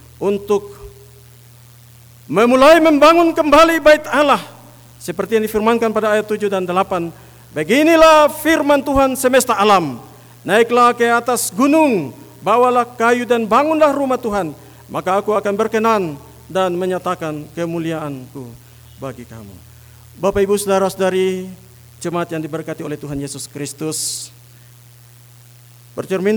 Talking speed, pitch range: 110 wpm, 130-215 Hz